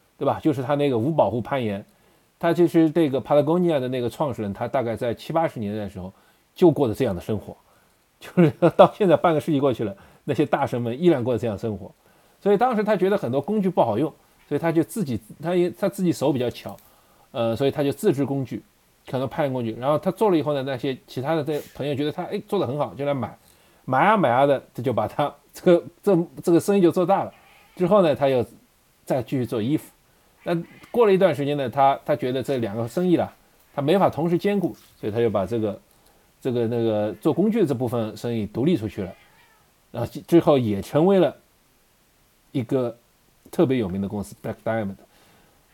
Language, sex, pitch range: Chinese, male, 115-170 Hz